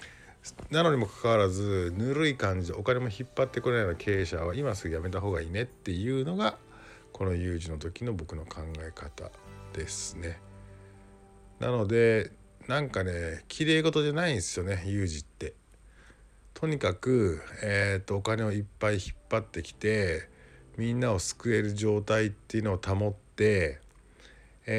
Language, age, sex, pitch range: Japanese, 50-69, male, 85-125 Hz